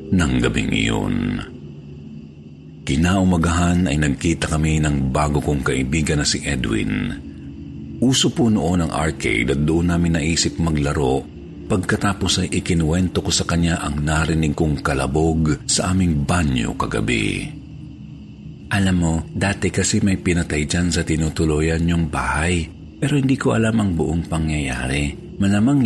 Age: 50-69